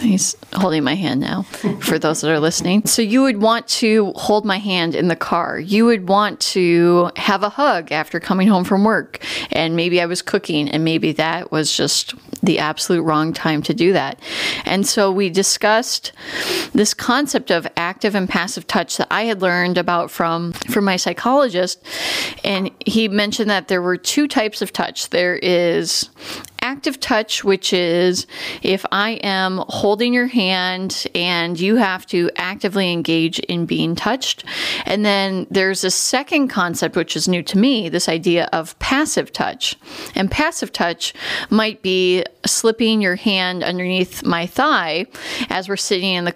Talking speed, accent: 170 wpm, American